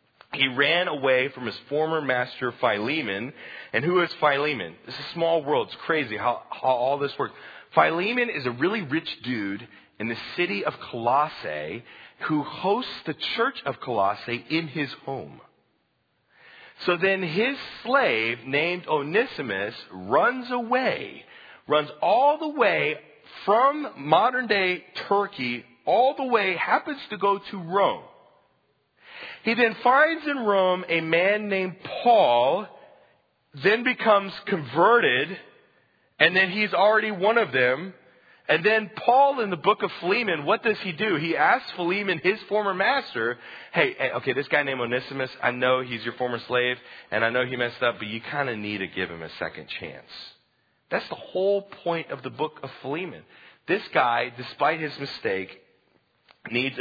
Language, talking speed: English, 155 wpm